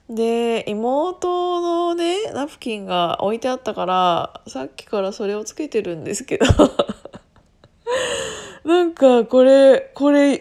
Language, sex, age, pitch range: Japanese, female, 20-39, 190-285 Hz